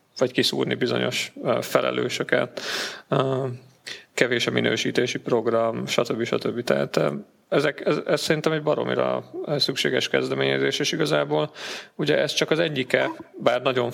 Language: Hungarian